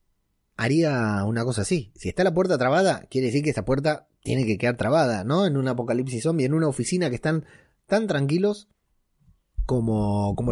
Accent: Argentinian